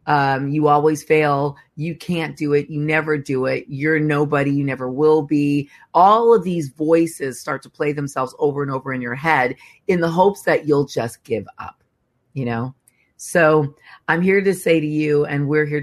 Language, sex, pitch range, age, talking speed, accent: English, female, 140-165 Hz, 40-59, 195 wpm, American